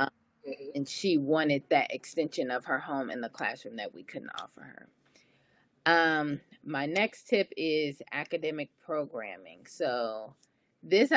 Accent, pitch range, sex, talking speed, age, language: American, 135-165 Hz, female, 135 wpm, 30-49, English